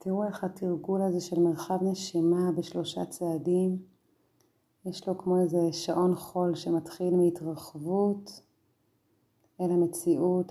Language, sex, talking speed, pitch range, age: Hebrew, female, 110 wpm, 160-175 Hz, 30-49